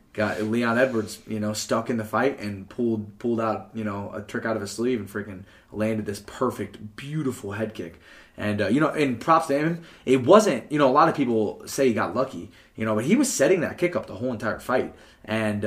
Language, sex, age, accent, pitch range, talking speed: English, male, 20-39, American, 100-130 Hz, 240 wpm